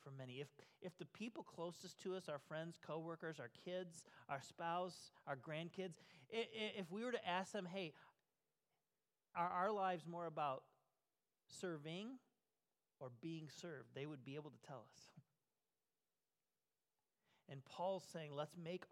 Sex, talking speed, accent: male, 145 wpm, American